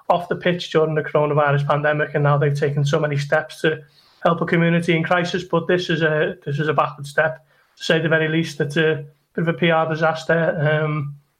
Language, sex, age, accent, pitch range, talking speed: English, male, 30-49, British, 155-170 Hz, 225 wpm